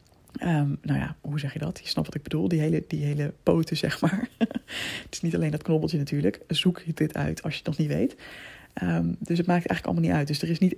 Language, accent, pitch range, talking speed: Dutch, Dutch, 145-190 Hz, 260 wpm